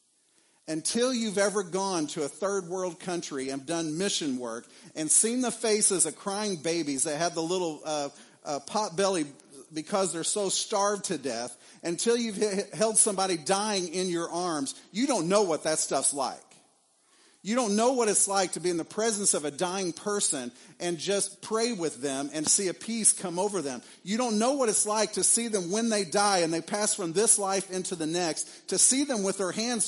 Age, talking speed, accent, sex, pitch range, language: 50-69, 205 wpm, American, male, 170-220 Hz, English